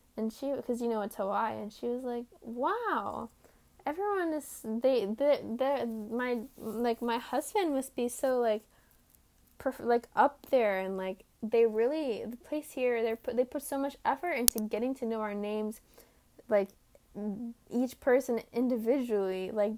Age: 10-29